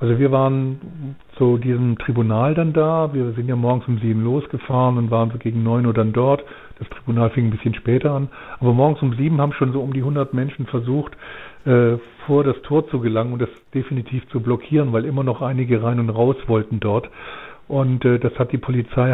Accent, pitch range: German, 120-140 Hz